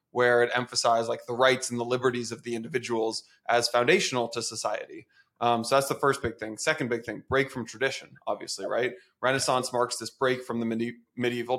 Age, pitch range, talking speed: 20-39, 120-135 Hz, 195 wpm